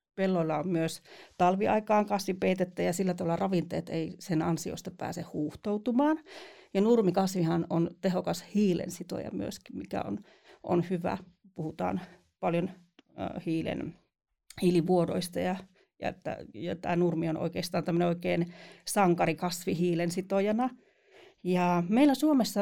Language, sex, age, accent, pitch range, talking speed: Finnish, female, 40-59, native, 170-200 Hz, 110 wpm